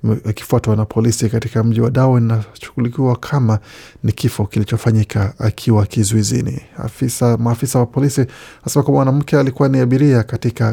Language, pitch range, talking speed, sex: Swahili, 115-130 Hz, 115 wpm, male